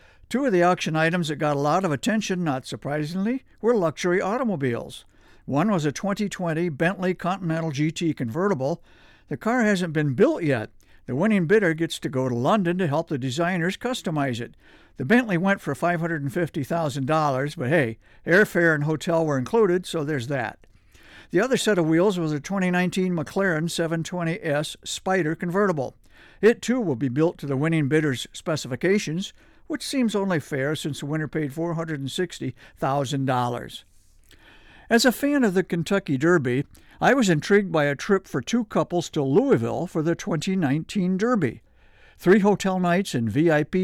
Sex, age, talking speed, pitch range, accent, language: male, 60-79, 160 wpm, 150-195 Hz, American, English